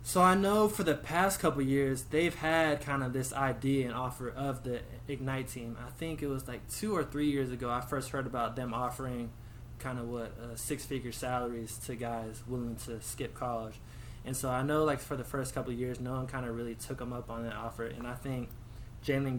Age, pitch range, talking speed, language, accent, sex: 20-39, 115-130 Hz, 225 wpm, English, American, male